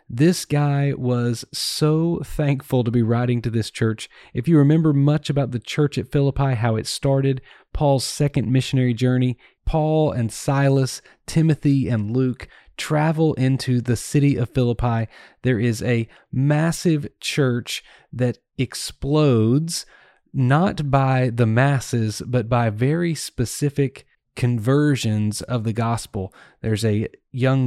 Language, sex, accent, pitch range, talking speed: English, male, American, 115-145 Hz, 130 wpm